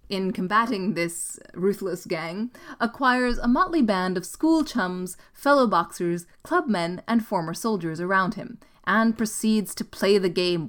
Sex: female